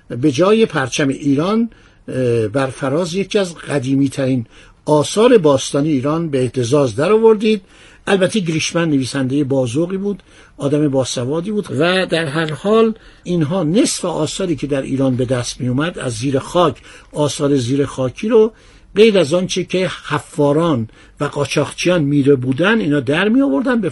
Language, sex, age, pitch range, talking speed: Persian, male, 60-79, 140-195 Hz, 150 wpm